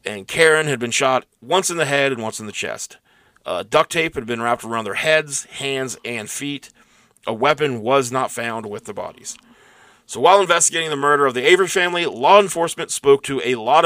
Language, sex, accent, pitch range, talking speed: English, male, American, 120-155 Hz, 210 wpm